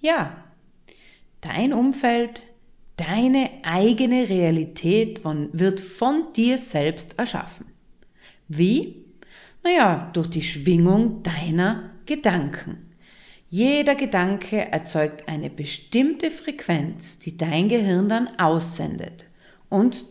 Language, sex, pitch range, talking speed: German, female, 165-250 Hz, 90 wpm